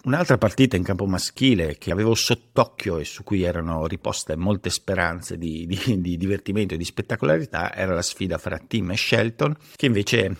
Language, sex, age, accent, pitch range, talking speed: Italian, male, 50-69, native, 85-105 Hz, 180 wpm